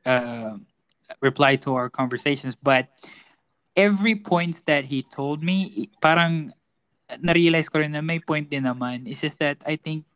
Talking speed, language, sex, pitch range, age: 150 wpm, Filipino, male, 135-165 Hz, 20-39